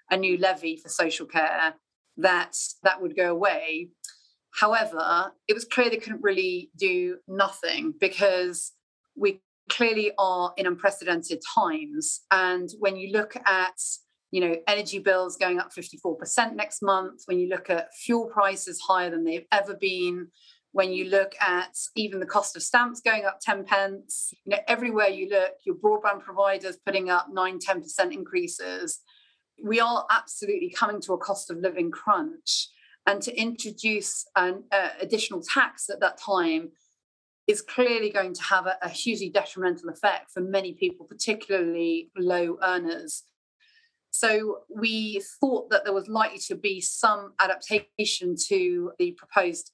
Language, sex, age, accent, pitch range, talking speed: English, female, 30-49, British, 185-240 Hz, 155 wpm